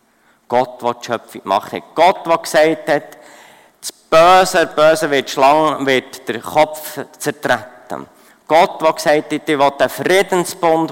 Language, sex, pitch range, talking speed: German, male, 130-165 Hz, 150 wpm